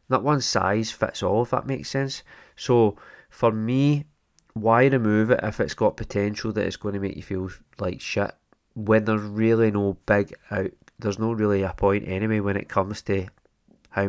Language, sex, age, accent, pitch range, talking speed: English, male, 20-39, British, 95-110 Hz, 190 wpm